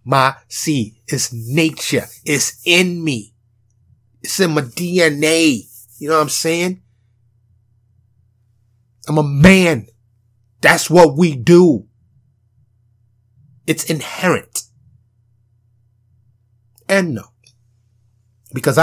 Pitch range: 115-140 Hz